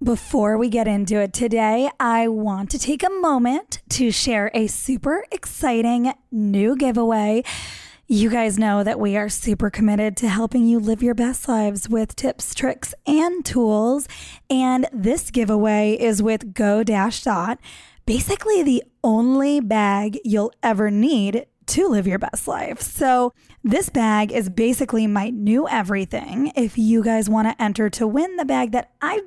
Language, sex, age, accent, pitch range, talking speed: English, female, 20-39, American, 215-255 Hz, 160 wpm